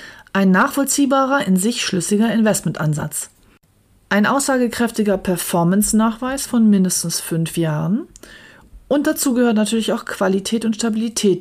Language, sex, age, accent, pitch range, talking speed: German, female, 40-59, German, 175-225 Hz, 110 wpm